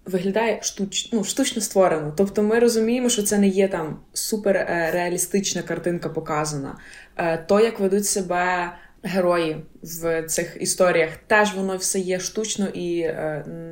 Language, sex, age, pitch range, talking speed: Ukrainian, female, 20-39, 180-215 Hz, 140 wpm